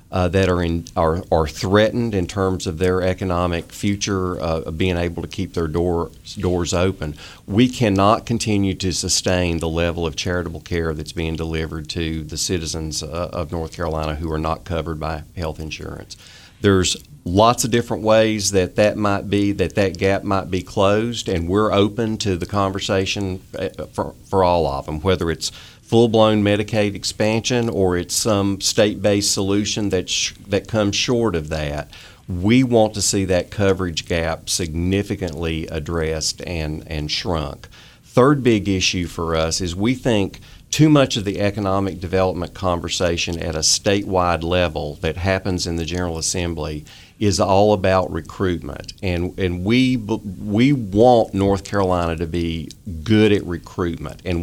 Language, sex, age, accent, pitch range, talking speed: English, male, 40-59, American, 85-100 Hz, 160 wpm